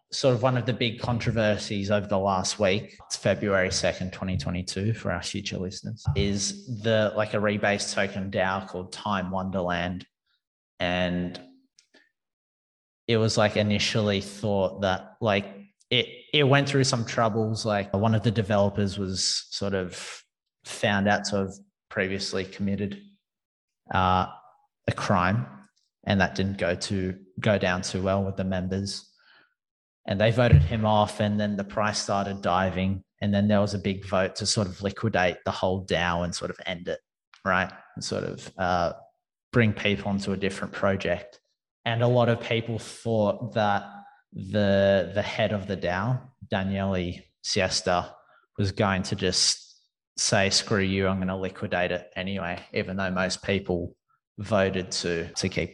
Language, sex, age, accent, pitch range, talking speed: English, male, 30-49, Australian, 95-110 Hz, 160 wpm